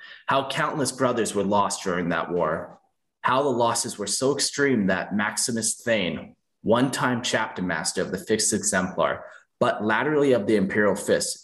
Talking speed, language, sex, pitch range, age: 155 wpm, English, male, 105-135 Hz, 30-49